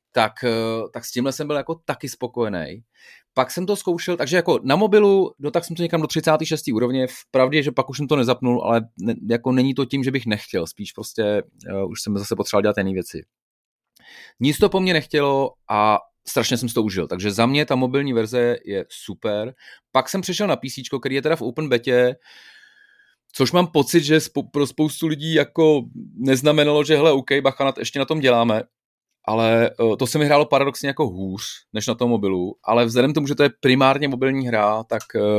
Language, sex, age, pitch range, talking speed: Czech, male, 30-49, 115-145 Hz, 205 wpm